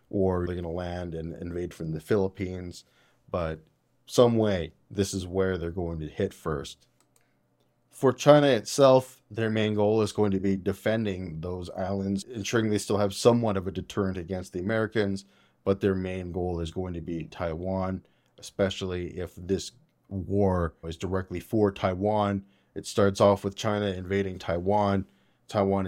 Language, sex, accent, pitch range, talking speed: English, male, American, 90-105 Hz, 160 wpm